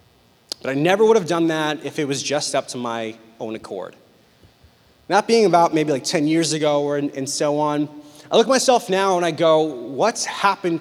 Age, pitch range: 20-39, 150-195 Hz